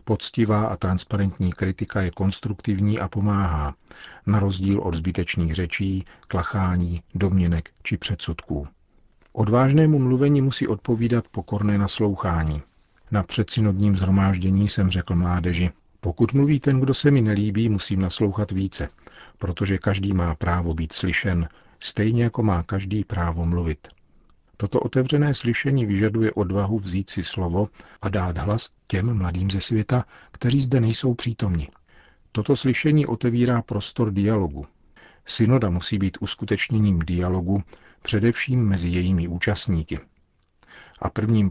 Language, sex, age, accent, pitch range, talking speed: Czech, male, 40-59, native, 90-110 Hz, 125 wpm